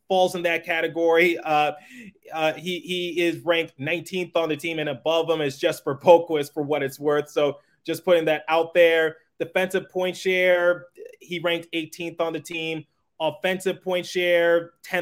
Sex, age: male, 30-49